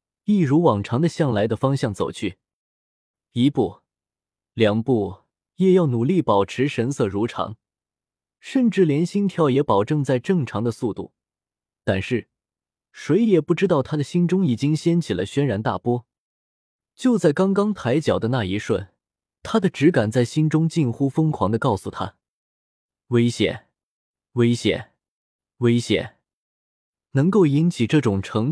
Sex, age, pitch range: male, 20-39, 105-165 Hz